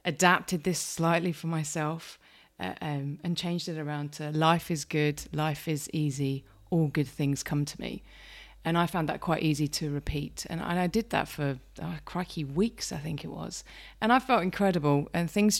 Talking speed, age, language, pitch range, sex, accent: 190 wpm, 30-49, English, 150-195 Hz, female, British